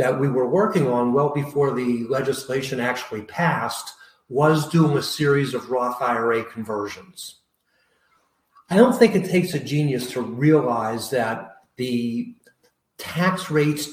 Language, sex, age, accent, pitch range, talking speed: English, male, 40-59, American, 125-155 Hz, 140 wpm